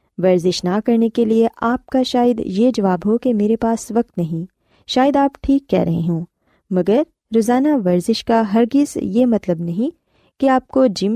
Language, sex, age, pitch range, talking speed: Urdu, female, 20-39, 180-250 Hz, 185 wpm